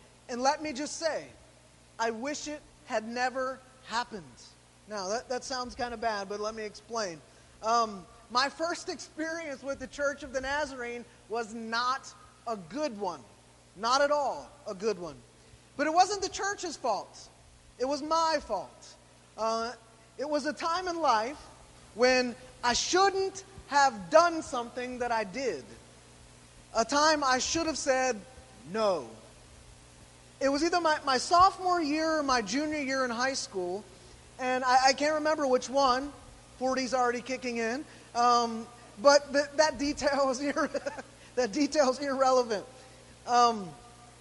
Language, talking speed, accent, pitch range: English, 150 wpm, American, 215-285 Hz